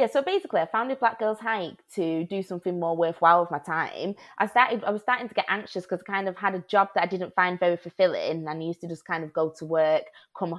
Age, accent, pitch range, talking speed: 20-39, British, 160-190 Hz, 270 wpm